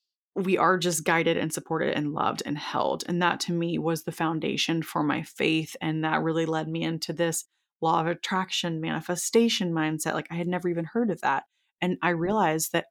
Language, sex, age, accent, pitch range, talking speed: English, female, 20-39, American, 160-190 Hz, 205 wpm